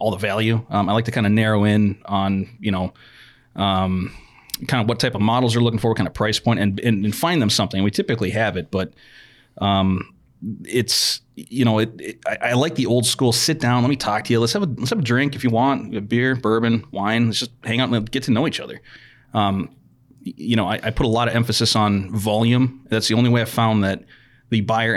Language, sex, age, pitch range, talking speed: English, male, 30-49, 105-120 Hz, 240 wpm